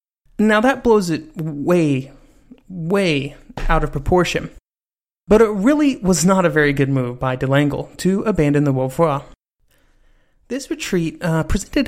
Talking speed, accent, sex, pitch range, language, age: 140 wpm, American, male, 155-200 Hz, English, 30-49